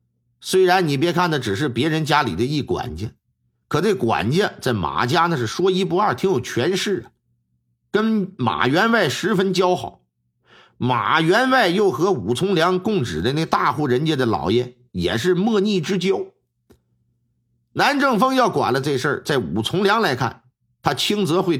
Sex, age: male, 50-69